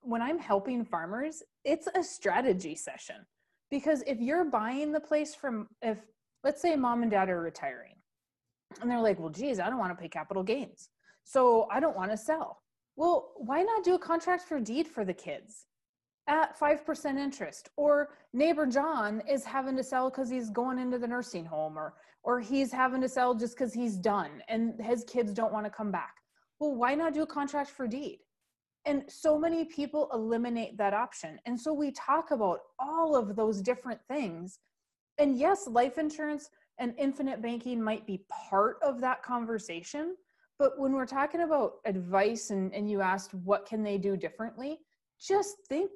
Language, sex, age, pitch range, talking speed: English, female, 30-49, 220-295 Hz, 185 wpm